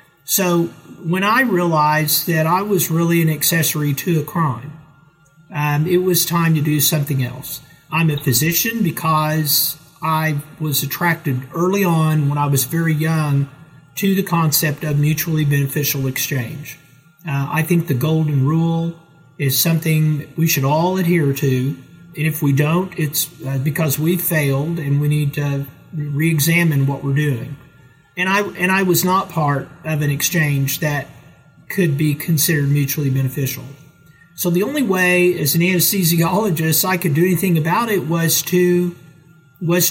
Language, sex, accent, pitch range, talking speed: English, male, American, 145-170 Hz, 155 wpm